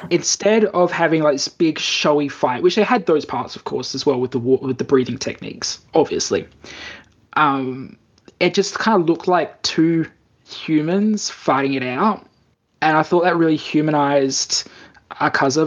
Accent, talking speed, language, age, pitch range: Australian, 165 wpm, English, 20-39, 135-160 Hz